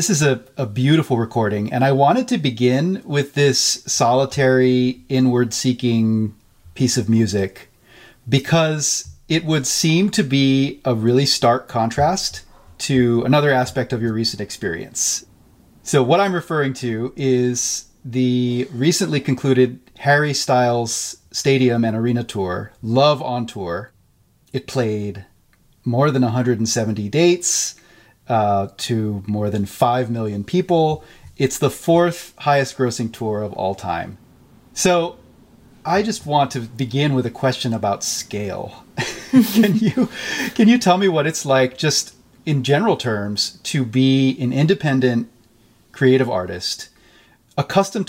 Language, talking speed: English, 130 wpm